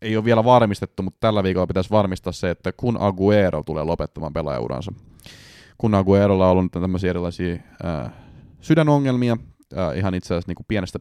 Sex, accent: male, native